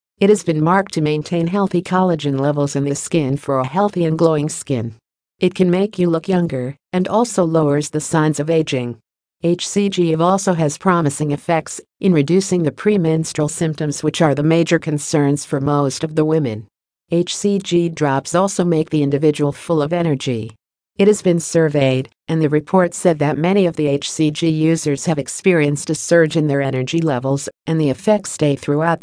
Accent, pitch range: American, 145-175 Hz